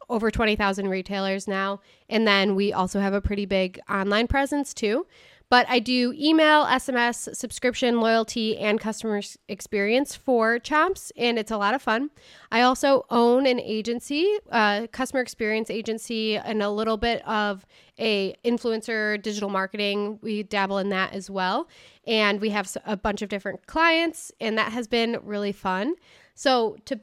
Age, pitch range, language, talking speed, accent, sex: 20-39, 205-245 Hz, English, 160 wpm, American, female